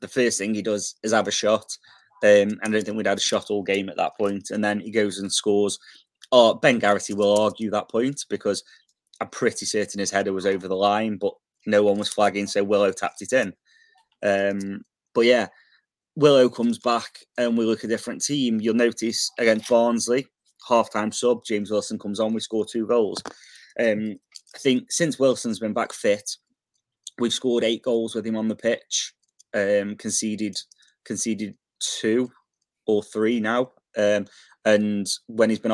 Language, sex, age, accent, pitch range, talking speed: English, male, 20-39, British, 100-115 Hz, 185 wpm